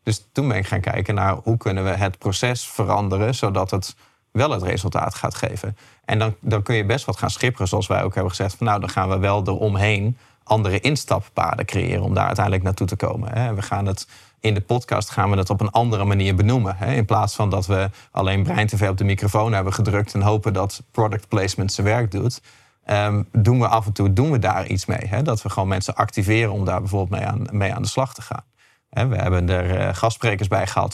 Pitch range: 100-115 Hz